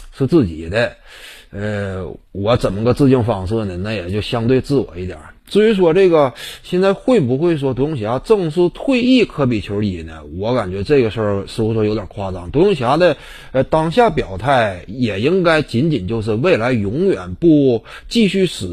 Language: Chinese